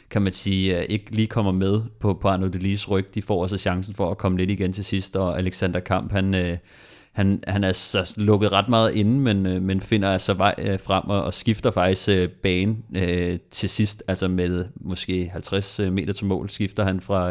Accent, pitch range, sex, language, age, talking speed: native, 95-105 Hz, male, Danish, 30-49, 200 wpm